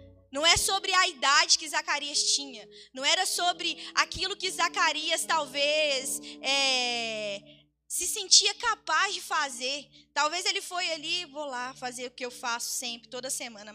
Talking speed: 150 wpm